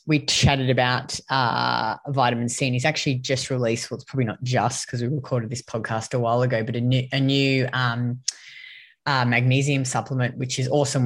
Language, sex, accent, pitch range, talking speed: English, female, Australian, 125-140 Hz, 195 wpm